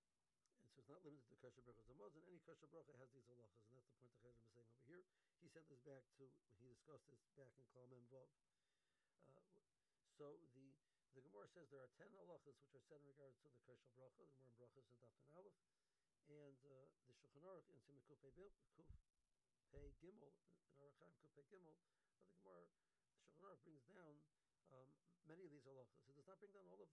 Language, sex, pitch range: English, male, 130-150 Hz